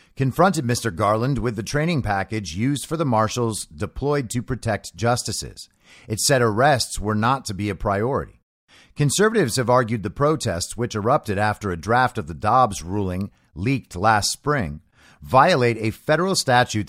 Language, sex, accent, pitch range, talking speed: English, male, American, 105-135 Hz, 160 wpm